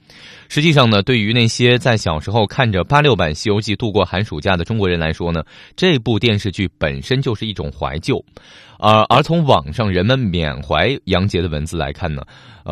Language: Chinese